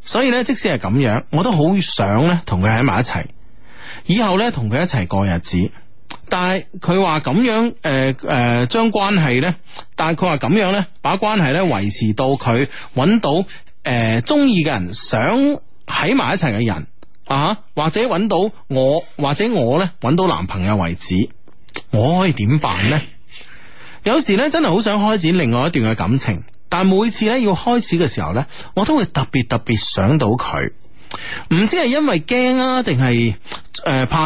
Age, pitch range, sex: 30-49, 115-190 Hz, male